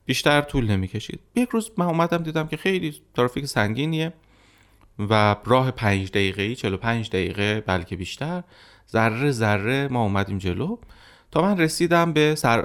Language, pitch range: Persian, 100-150 Hz